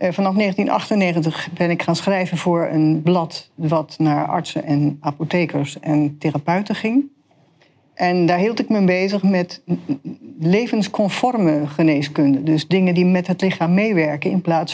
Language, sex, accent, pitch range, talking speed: Dutch, female, Dutch, 155-195 Hz, 145 wpm